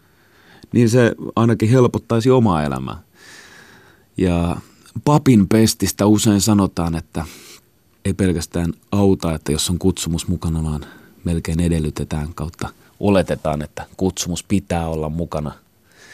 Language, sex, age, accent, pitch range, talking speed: Finnish, male, 30-49, native, 80-100 Hz, 110 wpm